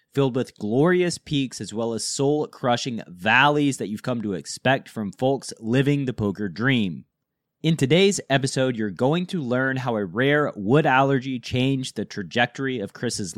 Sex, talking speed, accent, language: male, 165 wpm, American, English